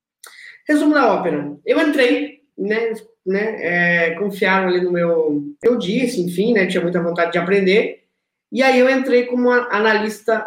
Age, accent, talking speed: 20-39, Brazilian, 155 wpm